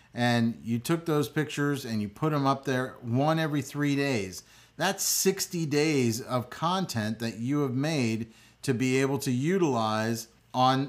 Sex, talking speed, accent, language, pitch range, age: male, 165 wpm, American, English, 125-160 Hz, 40-59